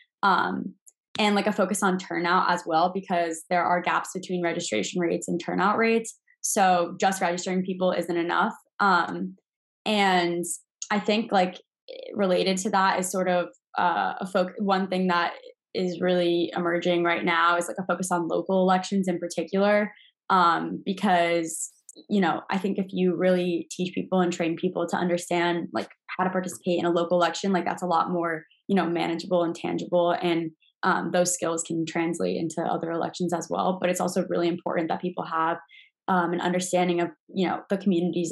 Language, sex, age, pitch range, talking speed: English, female, 10-29, 170-185 Hz, 185 wpm